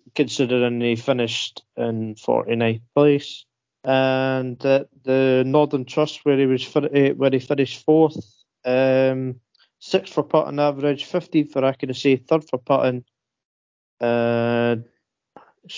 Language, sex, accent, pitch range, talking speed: English, male, British, 125-150 Hz, 130 wpm